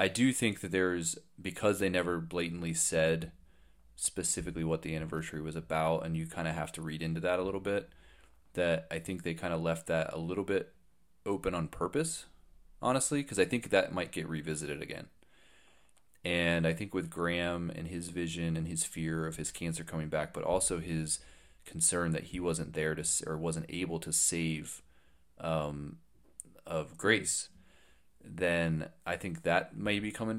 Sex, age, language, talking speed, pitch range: male, 30-49, English, 180 wpm, 80-85 Hz